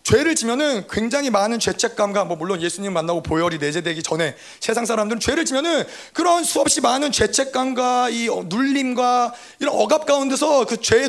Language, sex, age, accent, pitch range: Korean, male, 30-49, native, 230-300 Hz